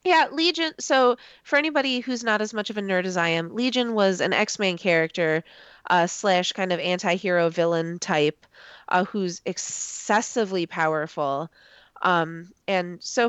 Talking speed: 155 wpm